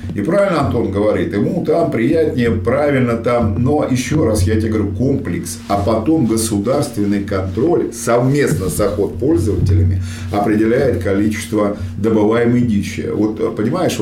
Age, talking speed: 50-69, 130 wpm